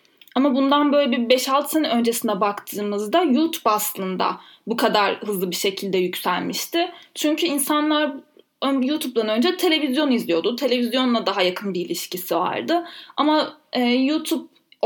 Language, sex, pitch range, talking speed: Turkish, female, 215-290 Hz, 120 wpm